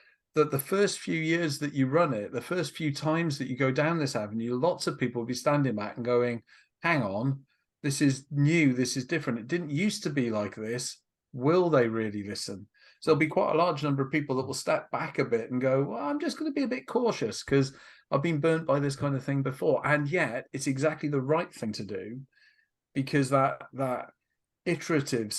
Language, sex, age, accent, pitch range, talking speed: English, male, 40-59, British, 130-155 Hz, 225 wpm